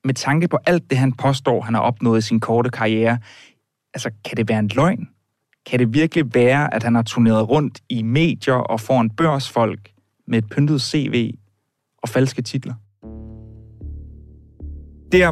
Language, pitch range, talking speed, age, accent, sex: Danish, 110-130 Hz, 170 wpm, 30-49, native, male